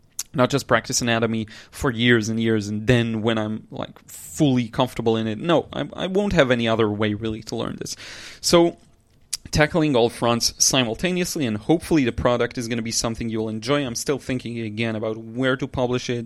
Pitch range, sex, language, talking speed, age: 115-135 Hz, male, English, 200 wpm, 30-49